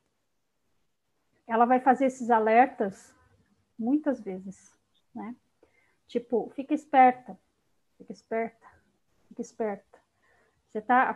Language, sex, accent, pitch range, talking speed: Portuguese, female, Brazilian, 235-280 Hz, 85 wpm